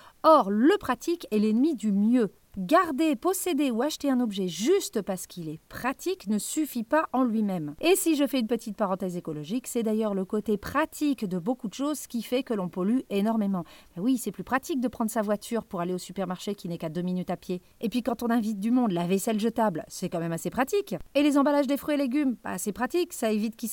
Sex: female